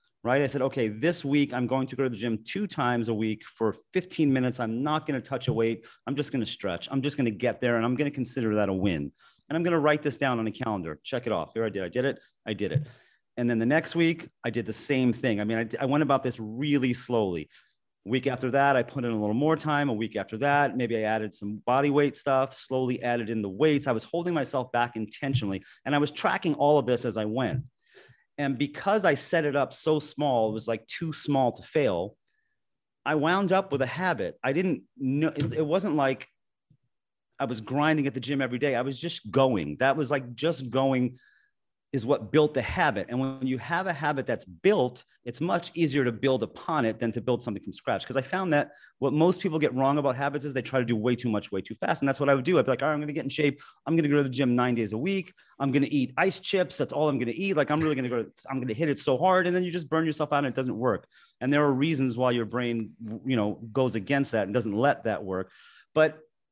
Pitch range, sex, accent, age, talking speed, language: 120-150 Hz, male, American, 30-49, 275 wpm, English